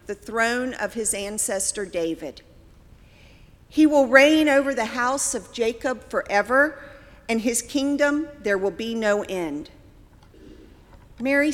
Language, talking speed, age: English, 125 wpm, 50-69